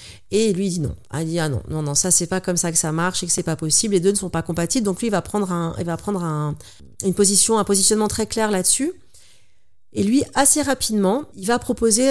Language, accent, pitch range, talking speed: French, French, 175-220 Hz, 265 wpm